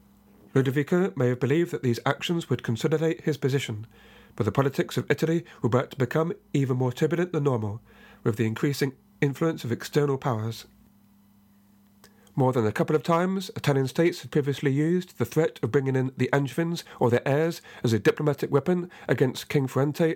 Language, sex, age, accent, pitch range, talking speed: English, male, 40-59, British, 125-160 Hz, 180 wpm